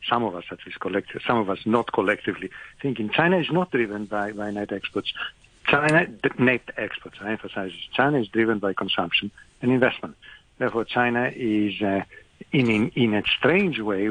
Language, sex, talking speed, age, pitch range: English, male, 180 wpm, 50-69, 105-135 Hz